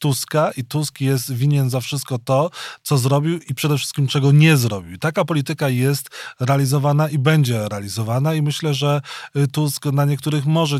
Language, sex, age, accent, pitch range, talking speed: Polish, male, 20-39, native, 125-145 Hz, 165 wpm